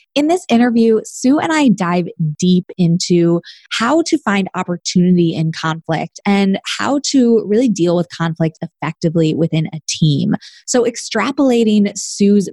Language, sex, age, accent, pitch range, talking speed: English, female, 20-39, American, 170-245 Hz, 140 wpm